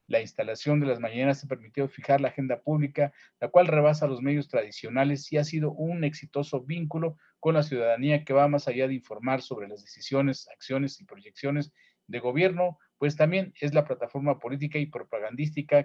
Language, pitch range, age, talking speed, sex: Spanish, 130-155 Hz, 40-59, 180 wpm, male